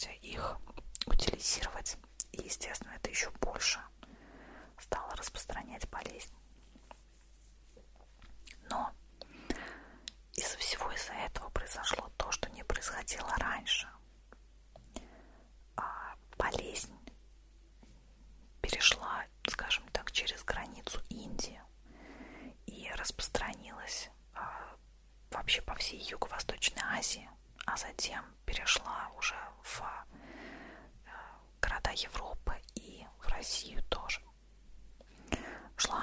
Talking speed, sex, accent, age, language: 75 wpm, female, native, 20-39, Russian